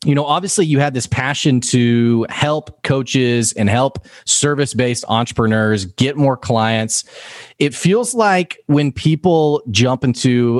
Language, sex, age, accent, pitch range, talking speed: English, male, 30-49, American, 115-150 Hz, 140 wpm